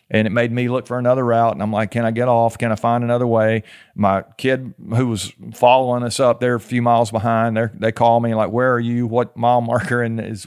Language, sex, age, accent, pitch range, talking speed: English, male, 40-59, American, 110-125 Hz, 260 wpm